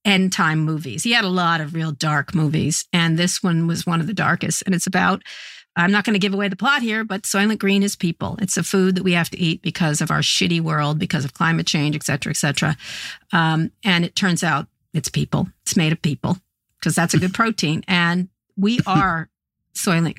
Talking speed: 225 wpm